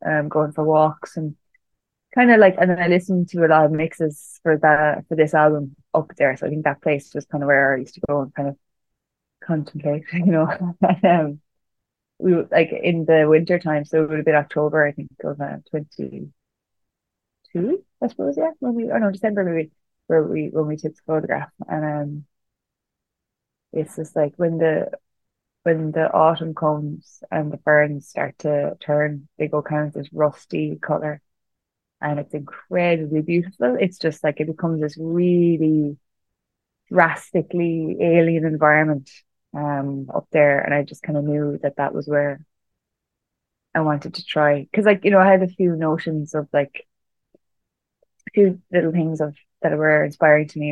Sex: female